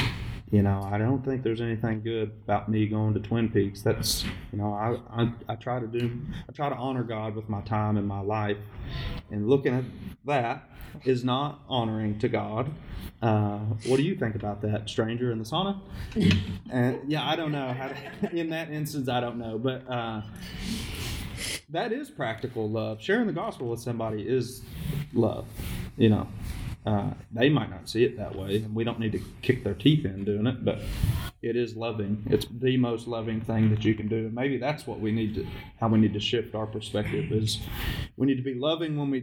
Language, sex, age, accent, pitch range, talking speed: English, male, 30-49, American, 105-130 Hz, 205 wpm